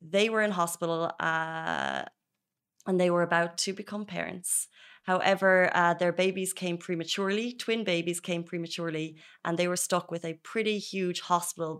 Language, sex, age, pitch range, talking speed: Arabic, female, 20-39, 170-195 Hz, 160 wpm